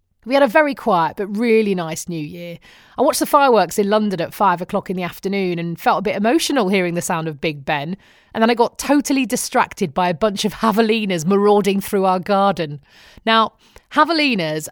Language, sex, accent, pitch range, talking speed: English, female, British, 180-230 Hz, 205 wpm